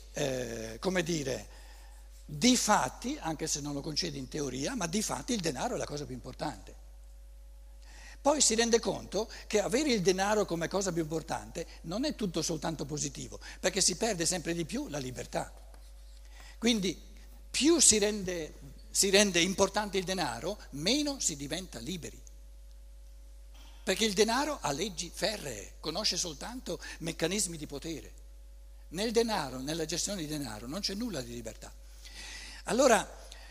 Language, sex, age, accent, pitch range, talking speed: Italian, male, 60-79, native, 145-220 Hz, 150 wpm